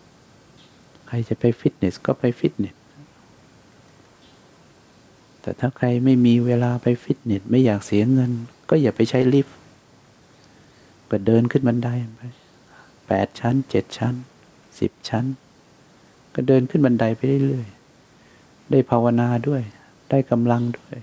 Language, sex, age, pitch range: English, male, 60-79, 105-125 Hz